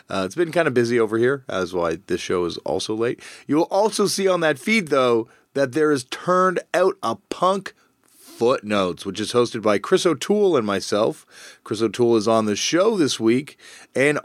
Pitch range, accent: 100-140 Hz, American